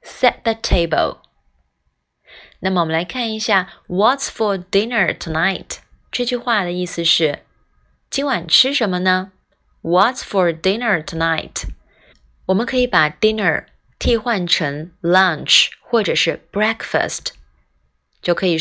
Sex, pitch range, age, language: female, 160-215 Hz, 20-39, Chinese